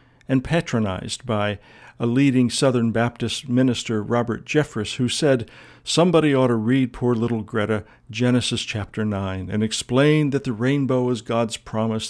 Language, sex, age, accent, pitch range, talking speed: English, male, 50-69, American, 110-140 Hz, 150 wpm